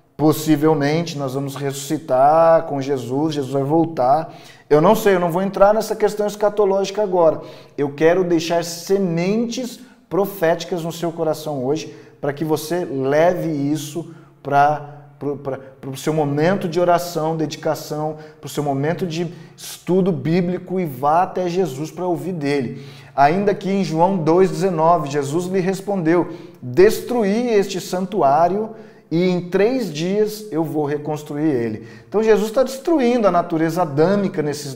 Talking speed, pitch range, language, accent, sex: 140 wpm, 150-190 Hz, Portuguese, Brazilian, male